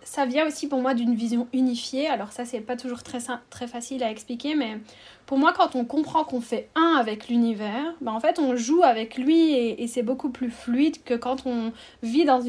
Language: French